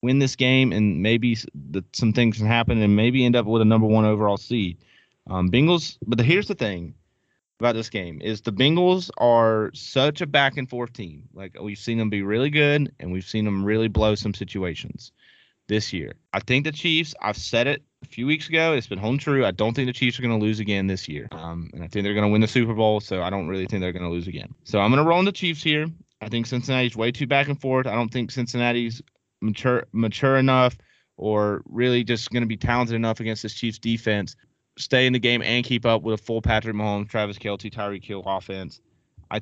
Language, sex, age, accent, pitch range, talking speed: English, male, 30-49, American, 105-125 Hz, 235 wpm